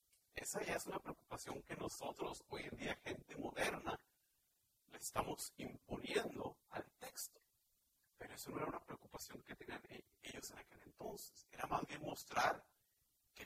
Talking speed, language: 155 wpm, Spanish